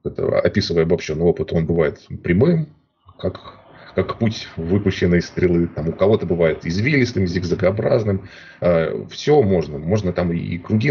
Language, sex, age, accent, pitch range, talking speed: Russian, male, 30-49, native, 90-120 Hz, 125 wpm